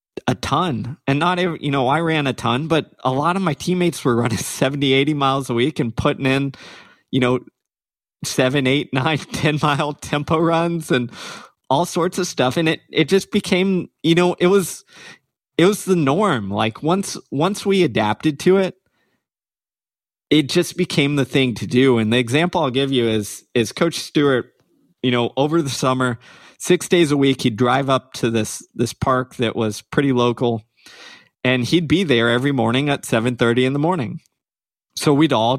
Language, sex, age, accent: English, male, 20-39, American